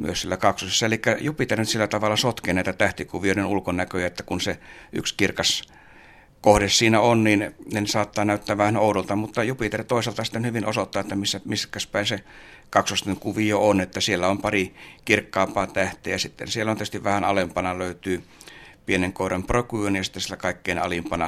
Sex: male